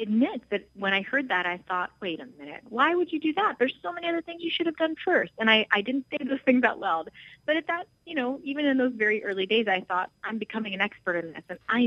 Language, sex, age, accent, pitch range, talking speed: English, female, 30-49, American, 190-245 Hz, 285 wpm